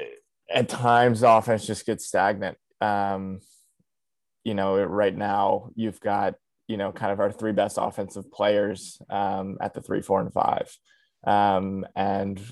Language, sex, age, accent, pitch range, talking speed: English, male, 20-39, American, 95-110 Hz, 150 wpm